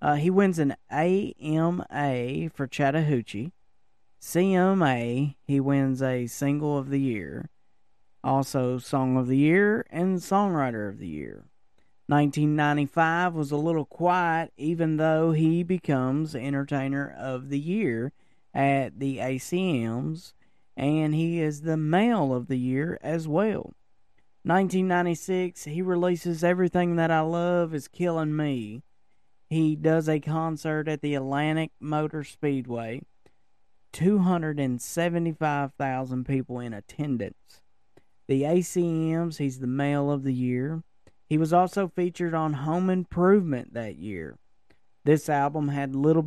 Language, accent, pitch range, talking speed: English, American, 130-170 Hz, 125 wpm